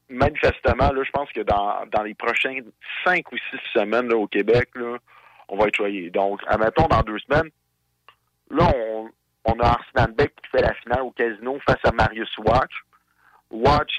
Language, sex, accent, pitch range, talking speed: French, male, French, 105-125 Hz, 185 wpm